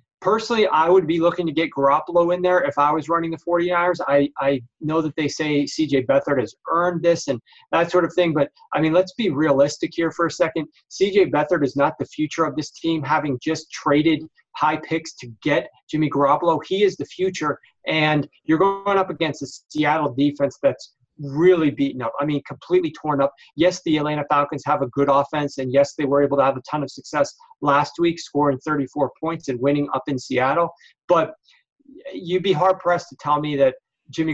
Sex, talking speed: male, 210 wpm